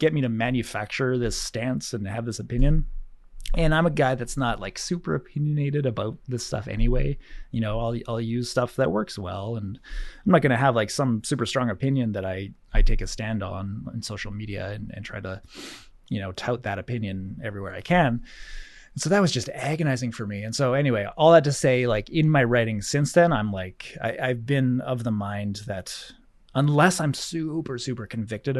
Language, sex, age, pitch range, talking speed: English, male, 20-39, 105-140 Hz, 210 wpm